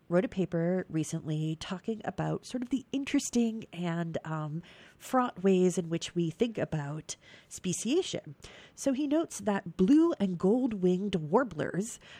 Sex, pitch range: female, 165-230 Hz